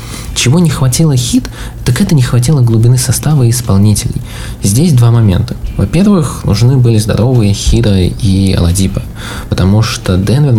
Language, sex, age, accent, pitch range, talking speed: Russian, male, 20-39, native, 100-125 Hz, 140 wpm